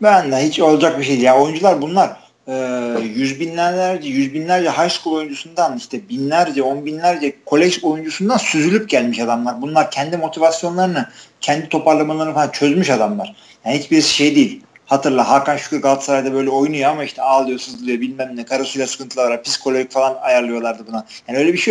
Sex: male